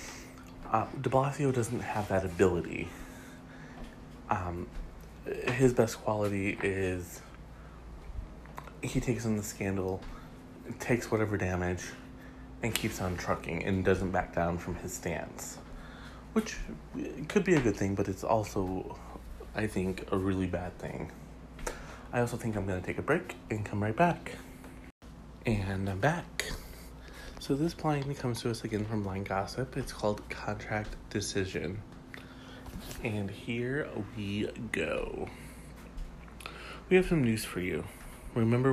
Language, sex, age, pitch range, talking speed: English, male, 30-49, 95-115 Hz, 135 wpm